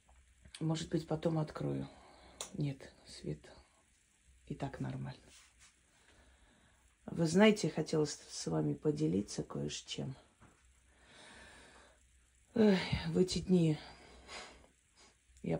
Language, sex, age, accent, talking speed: Russian, female, 30-49, native, 85 wpm